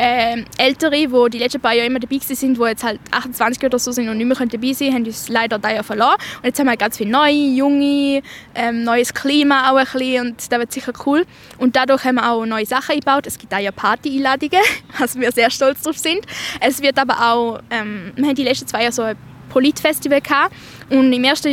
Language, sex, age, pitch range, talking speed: German, female, 10-29, 230-280 Hz, 235 wpm